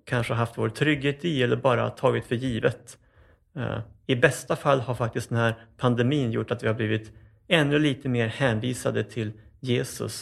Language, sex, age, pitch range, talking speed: Swedish, male, 30-49, 110-135 Hz, 170 wpm